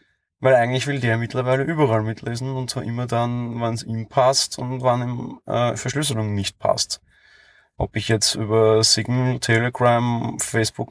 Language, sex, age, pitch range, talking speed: German, male, 20-39, 105-125 Hz, 165 wpm